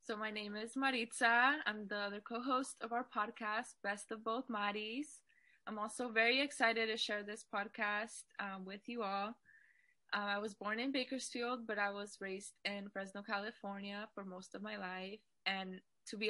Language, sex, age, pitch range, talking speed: English, female, 10-29, 200-240 Hz, 185 wpm